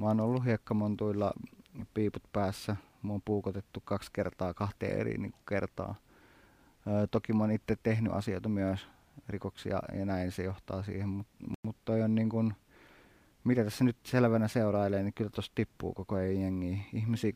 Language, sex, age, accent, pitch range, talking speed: Finnish, male, 30-49, native, 95-110 Hz, 150 wpm